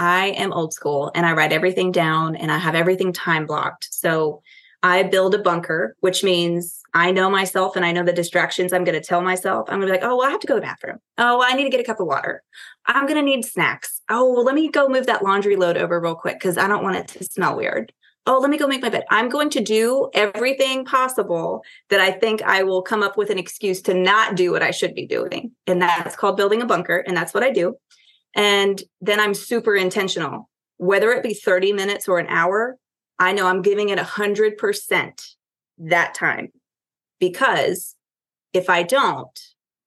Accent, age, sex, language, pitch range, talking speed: American, 20-39, female, English, 180-230 Hz, 225 wpm